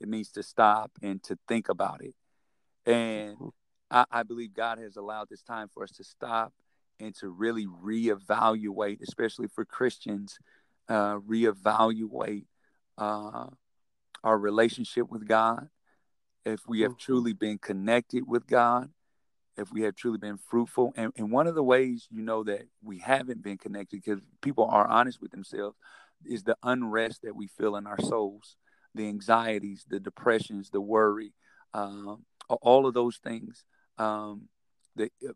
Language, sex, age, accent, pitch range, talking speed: English, male, 40-59, American, 105-115 Hz, 155 wpm